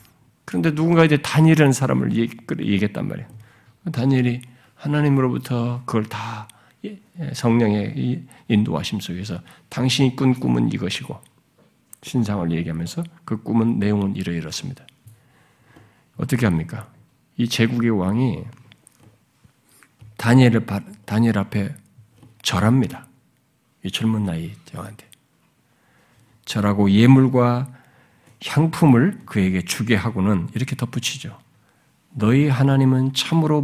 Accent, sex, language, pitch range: native, male, Korean, 110-150 Hz